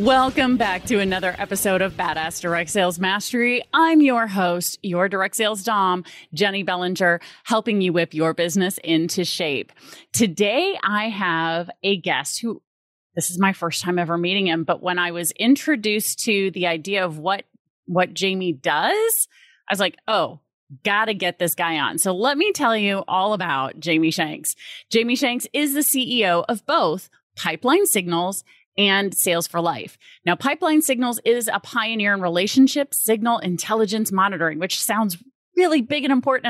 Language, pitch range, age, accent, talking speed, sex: English, 180-240 Hz, 30-49, American, 170 wpm, female